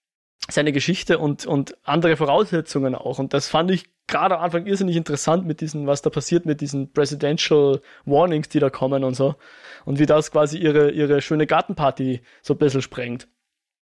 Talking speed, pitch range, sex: 180 wpm, 145-185 Hz, male